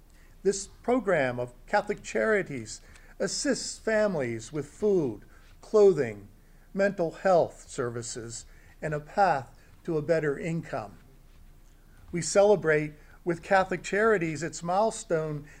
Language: English